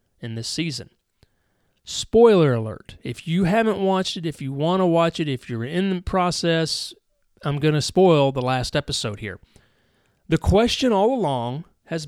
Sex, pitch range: male, 130-180 Hz